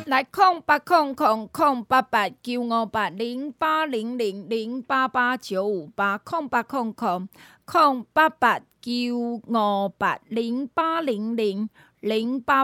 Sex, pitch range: female, 210-270 Hz